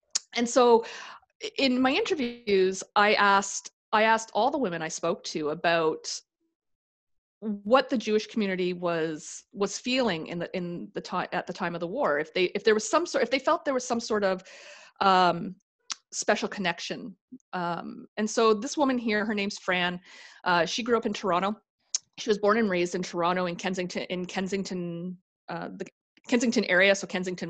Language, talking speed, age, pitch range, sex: English, 185 wpm, 30-49, 175-215 Hz, female